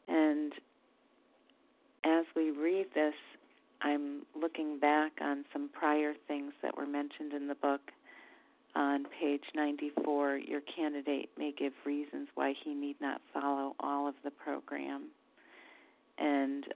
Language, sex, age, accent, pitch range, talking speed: English, female, 40-59, American, 140-160 Hz, 130 wpm